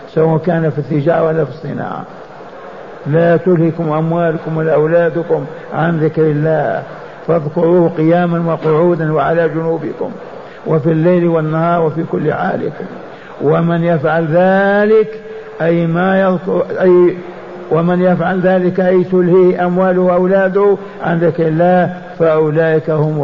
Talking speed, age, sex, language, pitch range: 115 wpm, 60-79, male, Arabic, 155-180 Hz